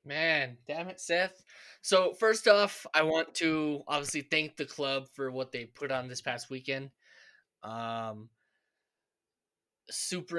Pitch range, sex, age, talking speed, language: 125-145 Hz, male, 20-39, 140 wpm, English